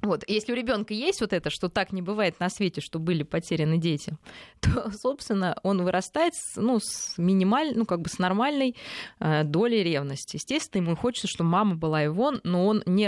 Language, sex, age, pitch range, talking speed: Russian, female, 20-39, 155-200 Hz, 190 wpm